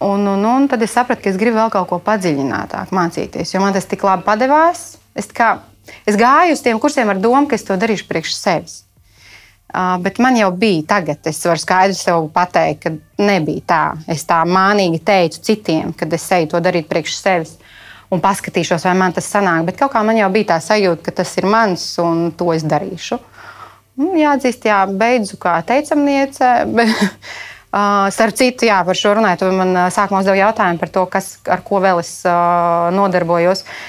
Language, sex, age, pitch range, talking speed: English, female, 30-49, 175-230 Hz, 190 wpm